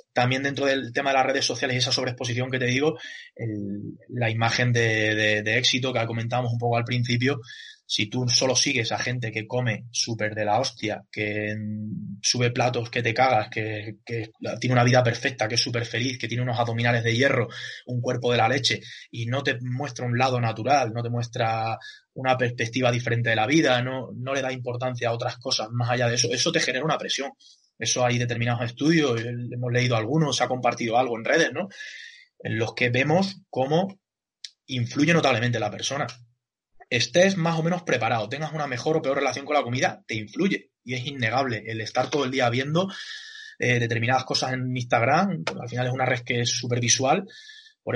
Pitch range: 120-135 Hz